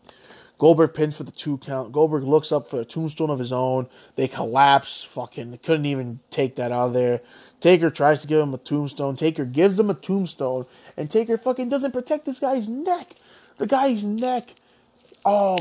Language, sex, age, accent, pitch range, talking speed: English, male, 20-39, American, 145-225 Hz, 190 wpm